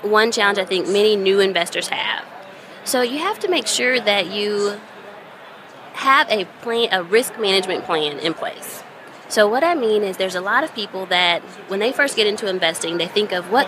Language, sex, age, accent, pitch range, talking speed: English, female, 20-39, American, 190-245 Hz, 200 wpm